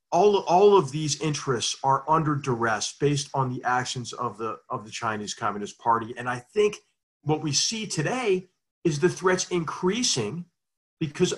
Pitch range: 125-155 Hz